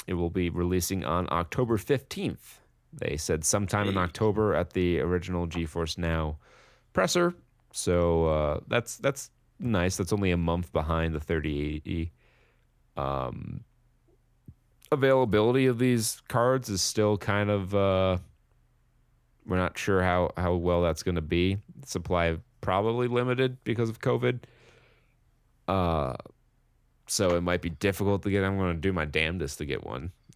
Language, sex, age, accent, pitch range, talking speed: English, male, 30-49, American, 85-115 Hz, 140 wpm